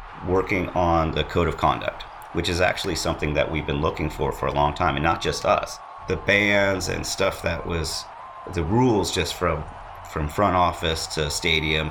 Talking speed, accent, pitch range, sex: 190 wpm, American, 80-100 Hz, male